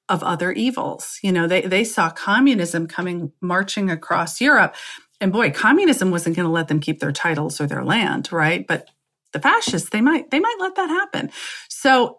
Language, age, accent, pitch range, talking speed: English, 40-59, American, 160-215 Hz, 190 wpm